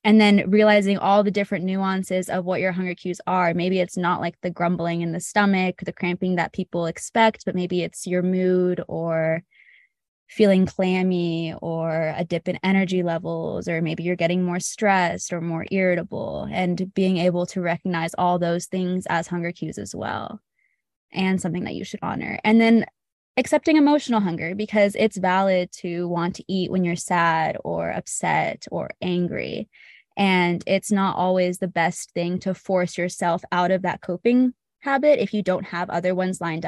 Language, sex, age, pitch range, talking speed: English, female, 20-39, 175-200 Hz, 180 wpm